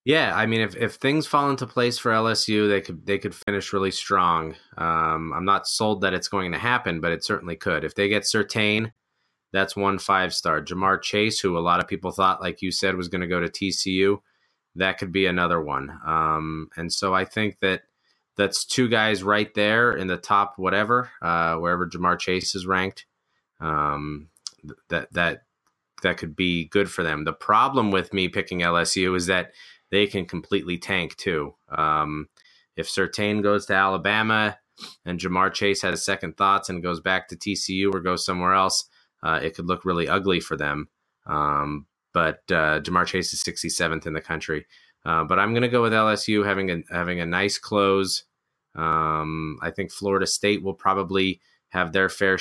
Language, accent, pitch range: English, American, 85-100 Hz